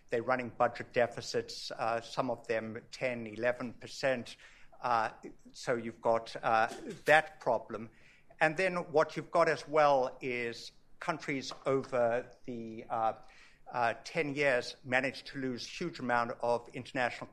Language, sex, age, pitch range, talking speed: English, male, 60-79, 120-145 Hz, 135 wpm